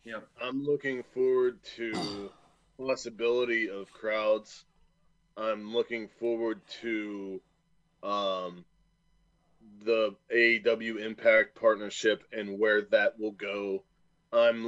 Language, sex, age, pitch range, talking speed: English, male, 20-39, 105-125 Hz, 95 wpm